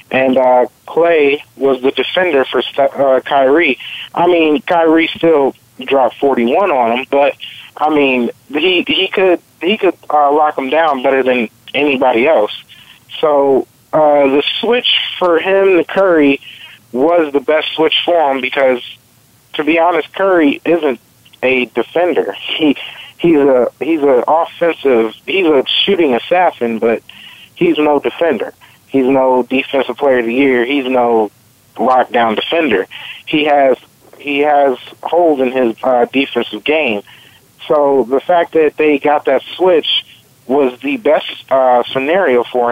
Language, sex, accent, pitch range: English, male, American, 120-150 Hz